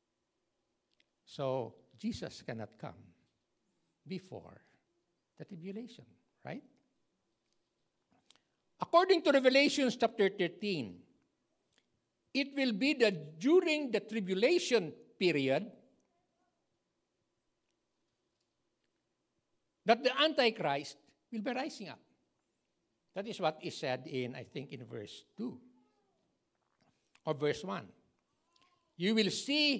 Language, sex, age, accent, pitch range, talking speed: English, male, 60-79, Filipino, 175-290 Hz, 90 wpm